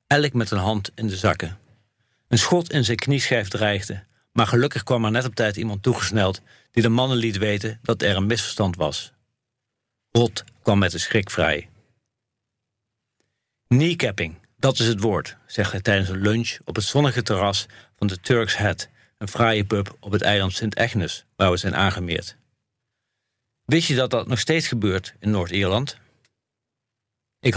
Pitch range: 100-120 Hz